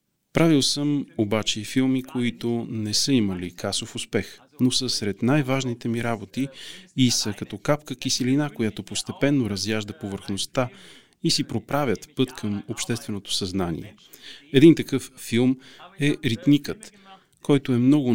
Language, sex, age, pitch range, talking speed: Bulgarian, male, 40-59, 105-135 Hz, 135 wpm